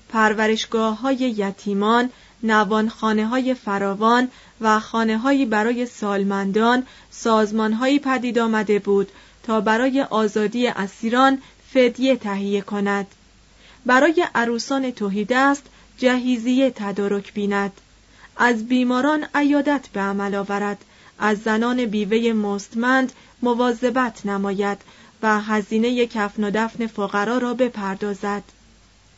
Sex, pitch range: female, 205-255 Hz